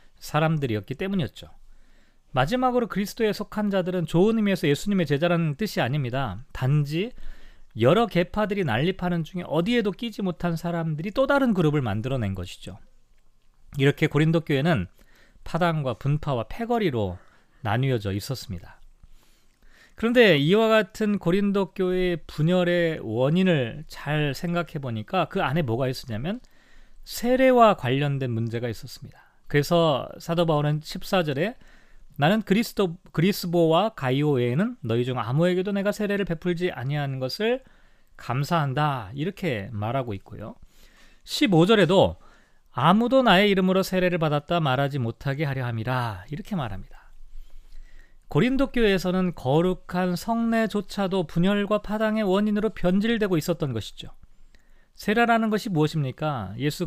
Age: 40-59